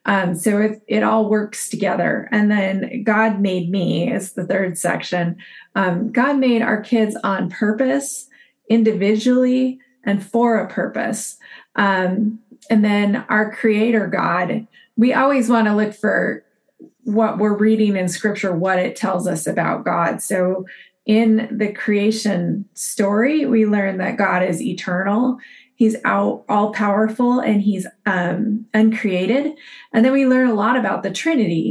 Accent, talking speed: American, 145 wpm